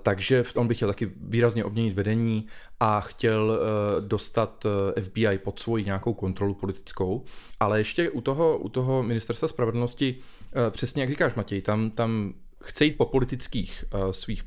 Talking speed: 150 wpm